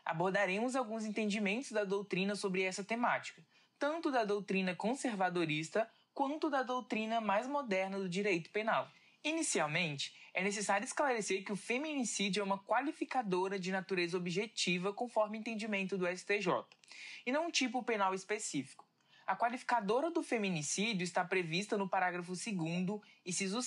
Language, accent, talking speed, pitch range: Portuguese, Brazilian, 135 wpm, 185-245 Hz